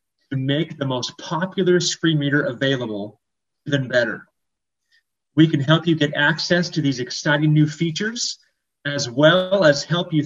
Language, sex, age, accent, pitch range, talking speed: English, male, 30-49, American, 140-175 Hz, 150 wpm